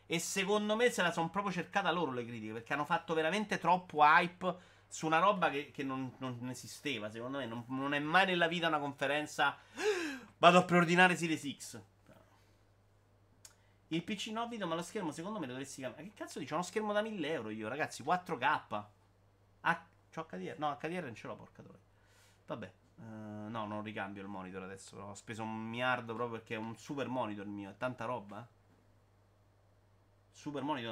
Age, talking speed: 30-49, 185 wpm